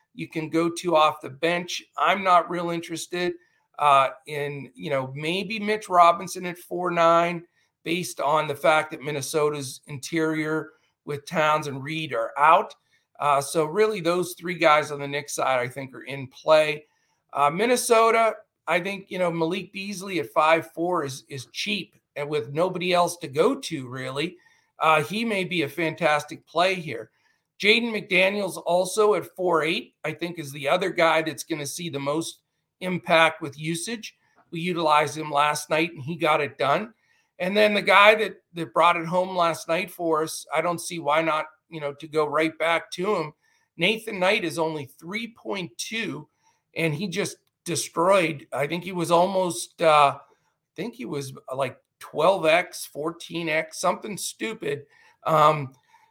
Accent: American